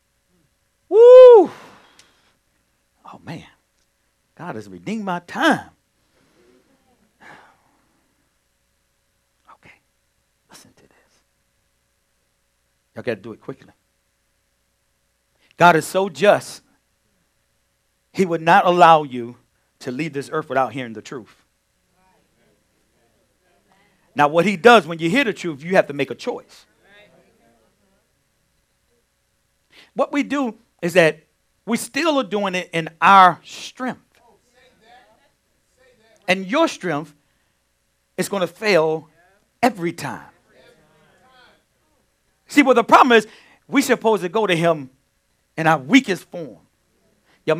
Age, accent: 50-69, American